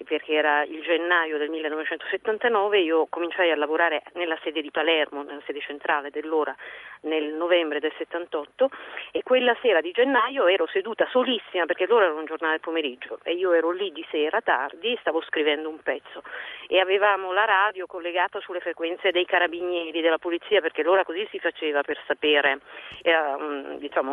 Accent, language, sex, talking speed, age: native, Italian, female, 165 wpm, 40-59